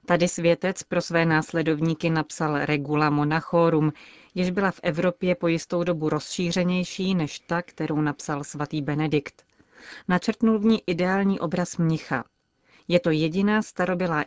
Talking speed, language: 135 wpm, Czech